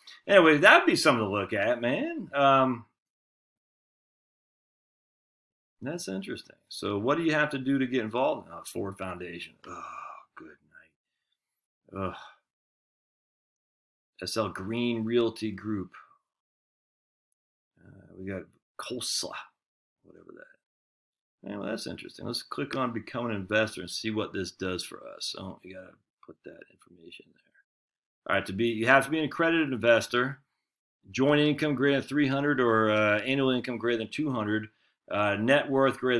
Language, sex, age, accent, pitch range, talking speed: English, male, 40-59, American, 105-135 Hz, 150 wpm